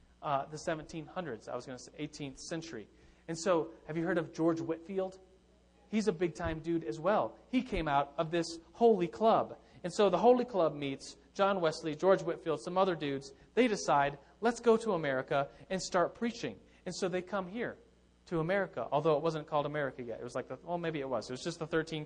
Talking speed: 215 wpm